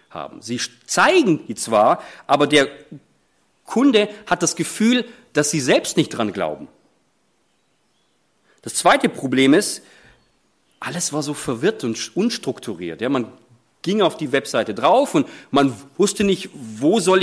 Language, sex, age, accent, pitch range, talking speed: German, male, 40-59, German, 125-190 Hz, 140 wpm